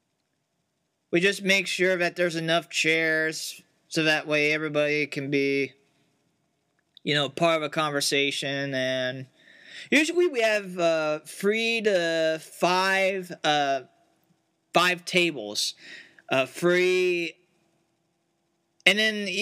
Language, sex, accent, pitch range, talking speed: English, male, American, 155-190 Hz, 105 wpm